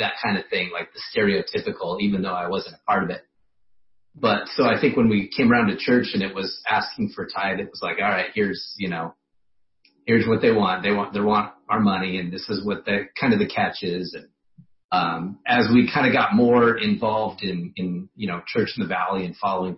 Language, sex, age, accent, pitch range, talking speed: English, male, 30-49, American, 90-120 Hz, 235 wpm